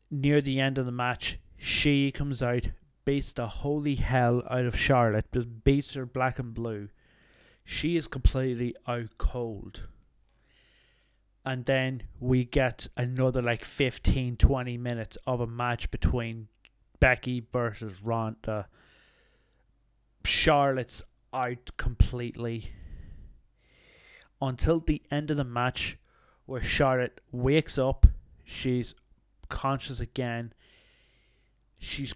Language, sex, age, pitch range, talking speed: English, male, 20-39, 115-135 Hz, 110 wpm